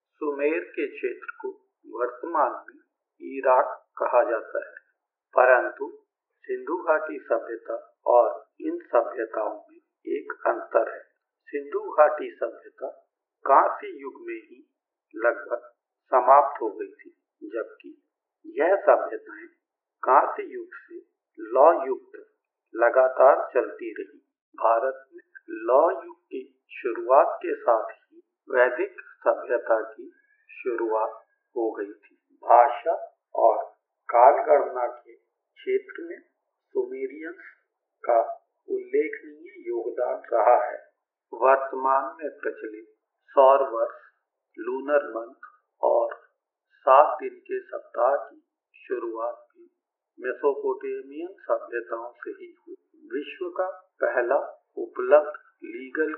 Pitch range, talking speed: 320-395 Hz, 100 wpm